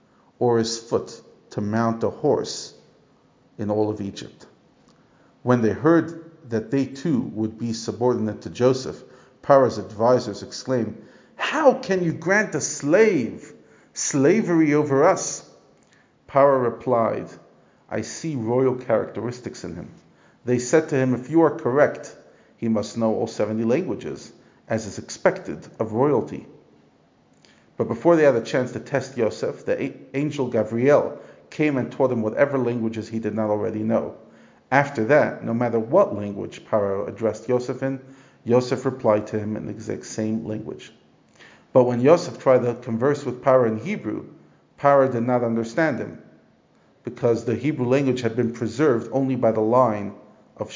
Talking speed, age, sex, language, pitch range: 155 wpm, 50-69, male, English, 110-135 Hz